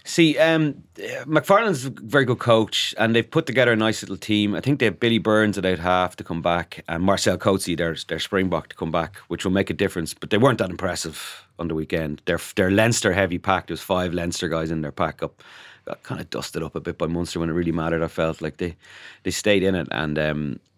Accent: Irish